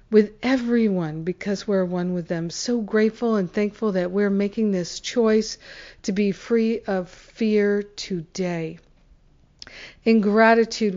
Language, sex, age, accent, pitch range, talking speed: English, female, 50-69, American, 180-225 Hz, 130 wpm